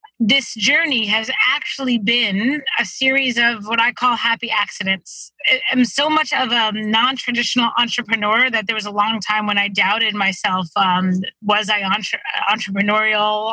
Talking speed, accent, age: 150 wpm, American, 30-49